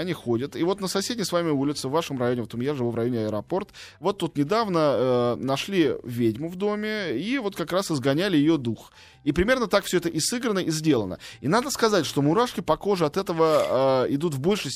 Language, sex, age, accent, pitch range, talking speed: Russian, male, 20-39, native, 120-165 Hz, 230 wpm